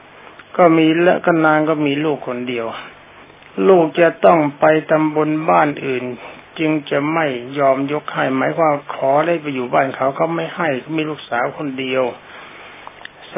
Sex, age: male, 60-79